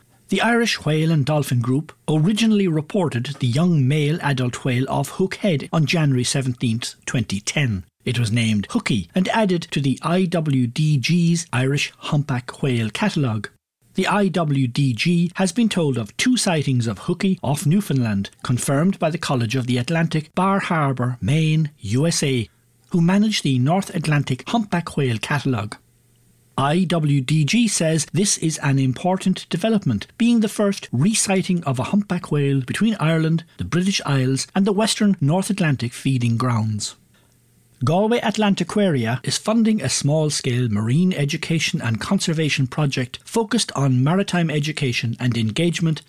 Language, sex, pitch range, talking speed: English, male, 125-180 Hz, 140 wpm